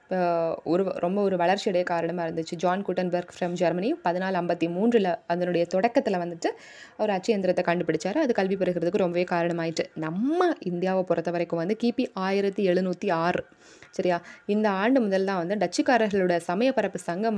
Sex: female